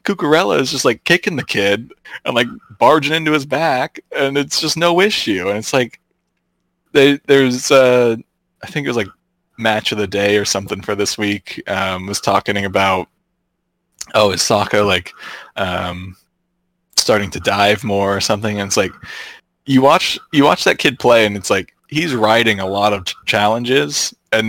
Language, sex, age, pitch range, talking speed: English, male, 20-39, 100-140 Hz, 180 wpm